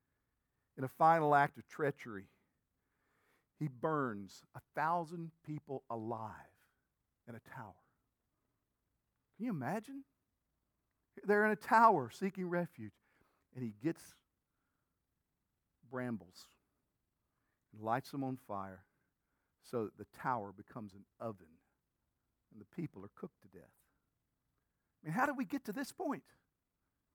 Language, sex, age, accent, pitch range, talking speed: English, male, 50-69, American, 155-255 Hz, 125 wpm